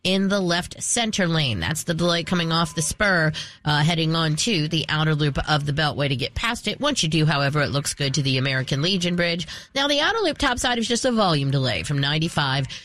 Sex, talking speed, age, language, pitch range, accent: female, 235 wpm, 40-59, English, 150-195 Hz, American